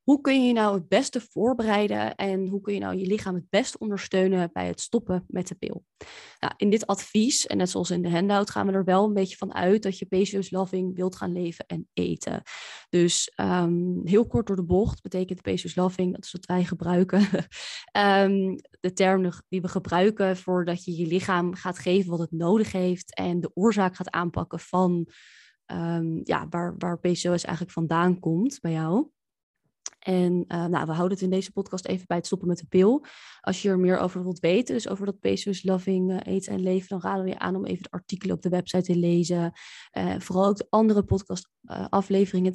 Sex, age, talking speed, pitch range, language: female, 20-39, 210 wpm, 175-200 Hz, Dutch